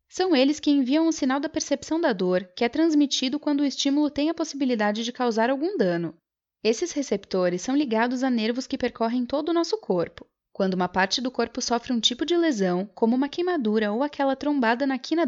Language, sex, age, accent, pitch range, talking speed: Portuguese, female, 10-29, Brazilian, 220-300 Hz, 210 wpm